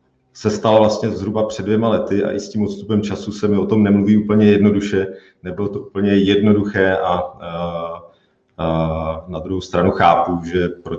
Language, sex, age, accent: Czech, male, 40-59, native